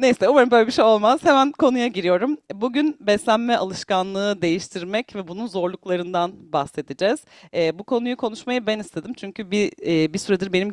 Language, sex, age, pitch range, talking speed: Turkish, female, 40-59, 160-255 Hz, 160 wpm